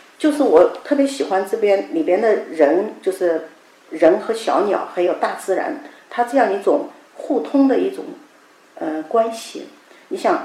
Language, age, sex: Chinese, 50-69, female